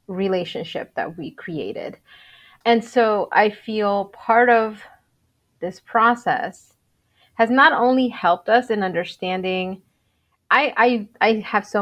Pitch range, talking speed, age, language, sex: 185-225 Hz, 120 wpm, 30-49, English, female